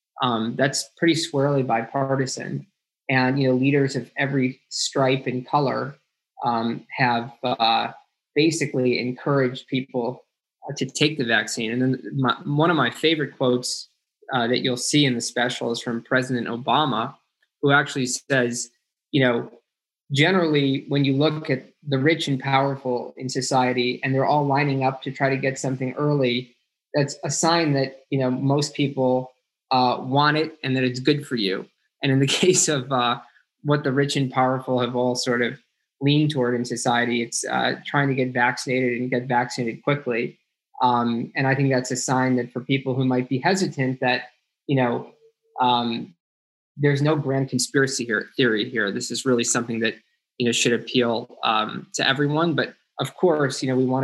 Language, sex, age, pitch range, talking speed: English, male, 20-39, 125-140 Hz, 180 wpm